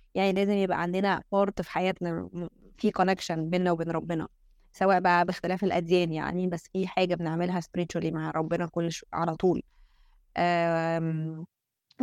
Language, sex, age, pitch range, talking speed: Arabic, female, 20-39, 175-195 Hz, 145 wpm